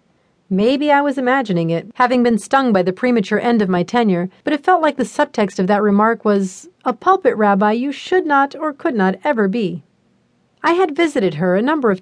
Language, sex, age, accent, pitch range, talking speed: English, female, 40-59, American, 190-285 Hz, 215 wpm